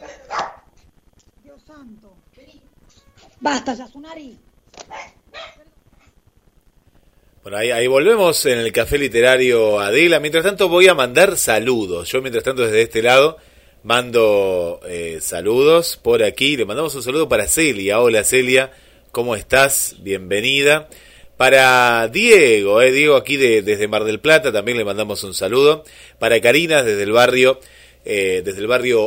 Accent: Argentinian